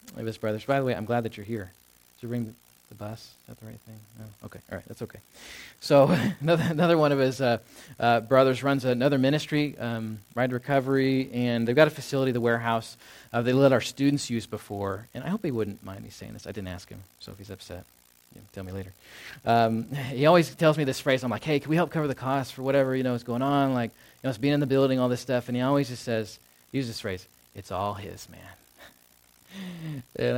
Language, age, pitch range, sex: English, 20-39, 105-145 Hz, male